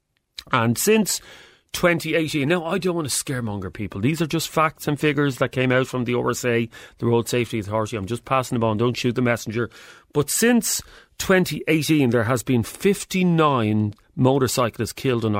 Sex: male